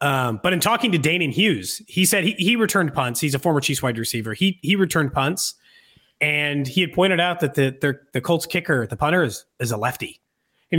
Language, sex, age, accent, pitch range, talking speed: English, male, 30-49, American, 145-205 Hz, 230 wpm